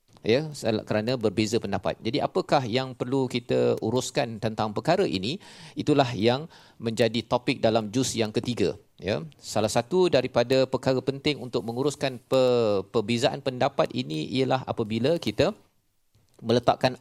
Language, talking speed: Malayalam, 125 wpm